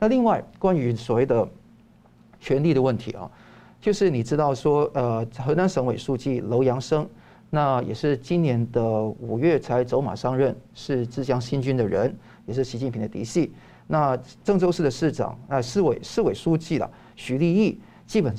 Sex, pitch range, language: male, 125-170 Hz, Chinese